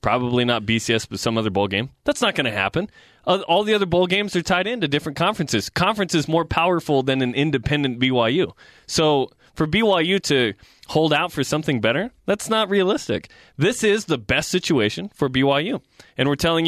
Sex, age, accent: male, 20-39, American